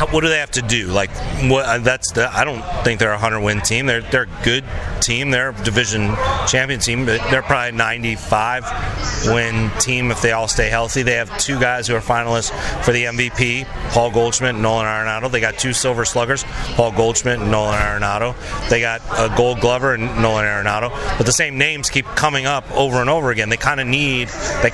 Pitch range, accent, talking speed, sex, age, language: 115-130 Hz, American, 215 wpm, male, 30-49, English